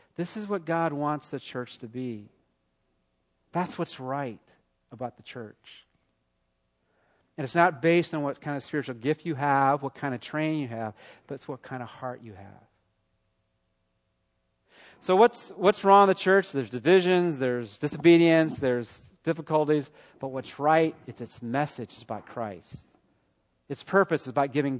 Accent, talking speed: American, 165 wpm